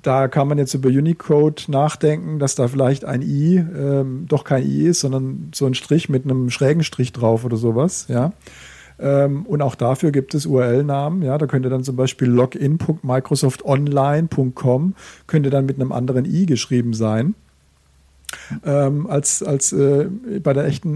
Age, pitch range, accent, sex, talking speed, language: 50-69, 130-160 Hz, German, male, 165 wpm, German